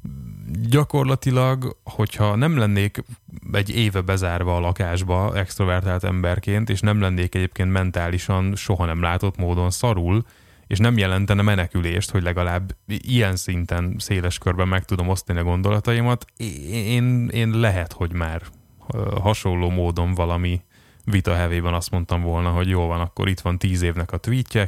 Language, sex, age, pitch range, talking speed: Hungarian, male, 20-39, 90-110 Hz, 140 wpm